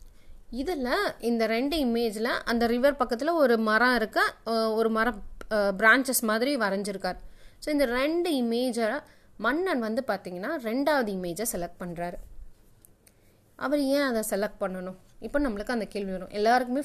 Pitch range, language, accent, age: 195-250 Hz, Tamil, native, 20-39